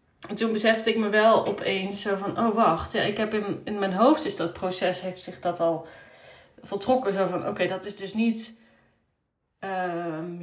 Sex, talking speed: female, 200 wpm